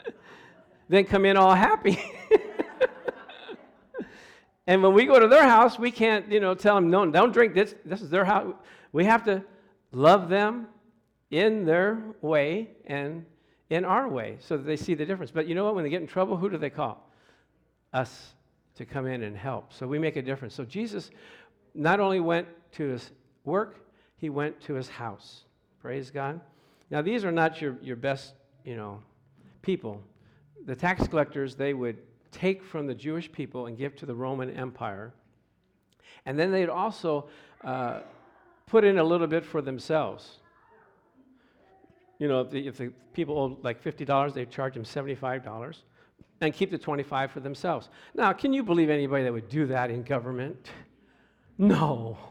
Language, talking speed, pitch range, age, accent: English, 175 wpm, 135-190 Hz, 60-79, American